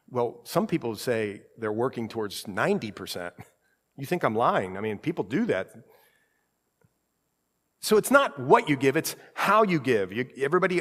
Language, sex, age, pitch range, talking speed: English, male, 50-69, 115-185 Hz, 155 wpm